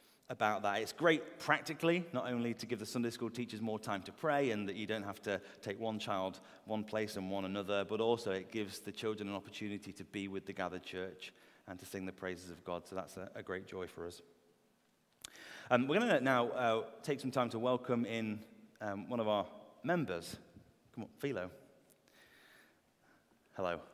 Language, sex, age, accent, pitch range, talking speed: English, male, 30-49, British, 100-120 Hz, 205 wpm